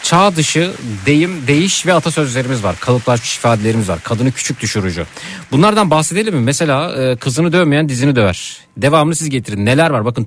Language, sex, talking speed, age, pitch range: Turkish, male, 160 wpm, 50-69, 115-150 Hz